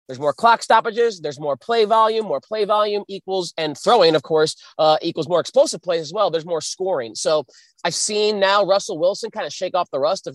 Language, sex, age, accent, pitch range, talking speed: English, male, 30-49, American, 145-190 Hz, 225 wpm